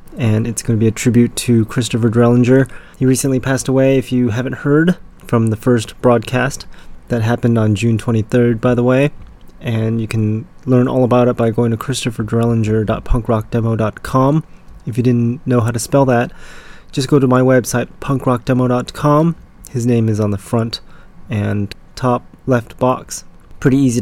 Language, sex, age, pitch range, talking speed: English, male, 20-39, 115-130 Hz, 165 wpm